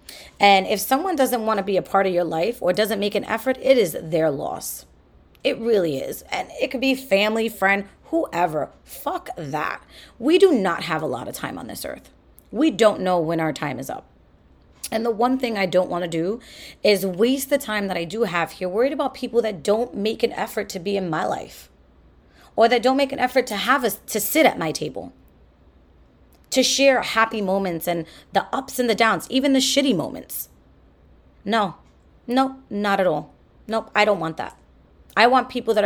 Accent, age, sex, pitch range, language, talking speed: American, 30-49, female, 170-240 Hz, English, 210 wpm